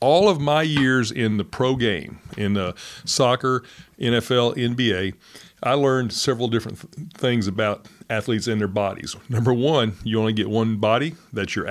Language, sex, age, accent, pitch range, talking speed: English, male, 40-59, American, 110-140 Hz, 170 wpm